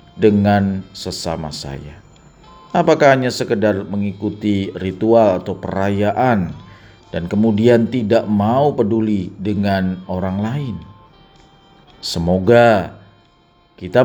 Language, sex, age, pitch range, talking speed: Indonesian, male, 40-59, 85-125 Hz, 85 wpm